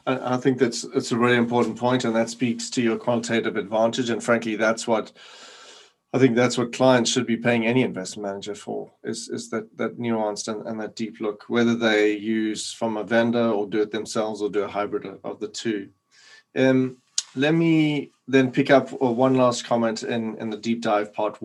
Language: English